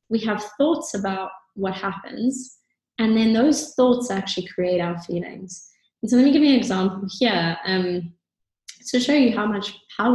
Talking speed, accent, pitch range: 175 wpm, British, 180-225 Hz